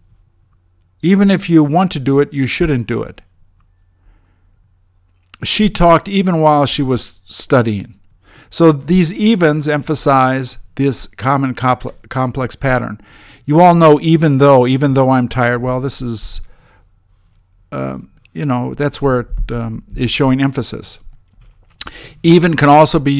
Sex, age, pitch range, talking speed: male, 50-69, 105-150 Hz, 135 wpm